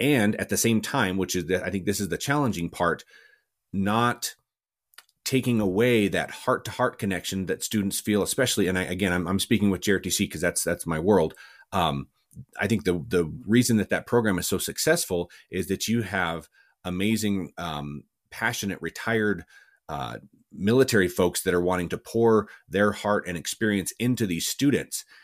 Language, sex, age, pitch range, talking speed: English, male, 30-49, 90-110 Hz, 175 wpm